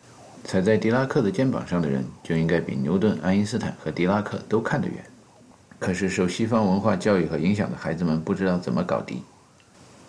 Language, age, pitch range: Chinese, 50-69, 90-115 Hz